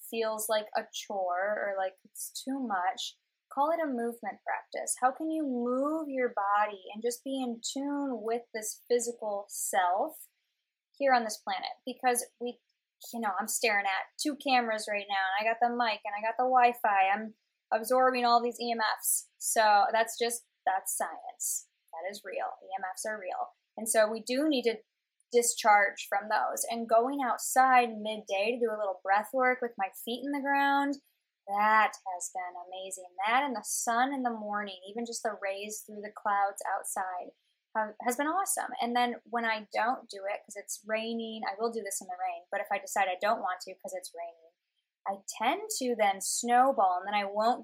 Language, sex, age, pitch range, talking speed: English, female, 10-29, 205-250 Hz, 195 wpm